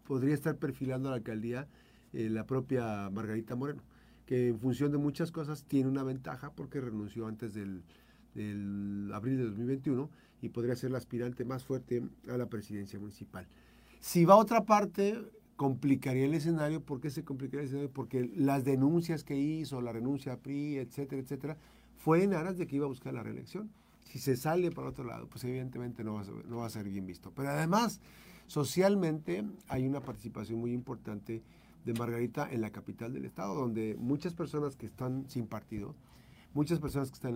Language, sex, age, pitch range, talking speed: Spanish, male, 40-59, 115-145 Hz, 185 wpm